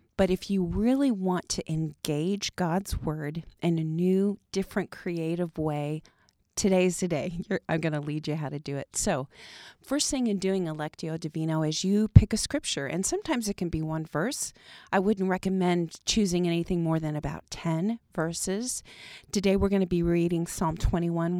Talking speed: 180 wpm